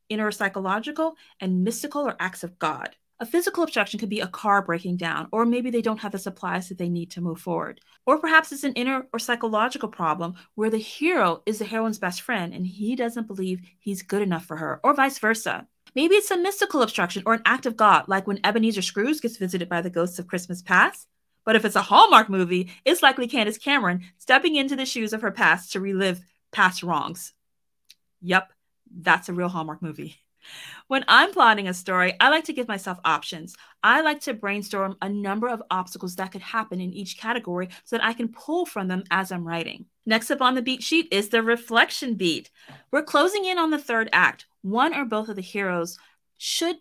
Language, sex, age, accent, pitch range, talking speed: English, female, 30-49, American, 185-255 Hz, 215 wpm